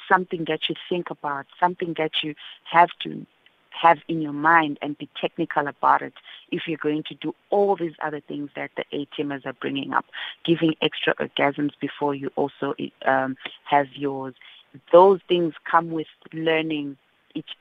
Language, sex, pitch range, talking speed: English, female, 145-175 Hz, 165 wpm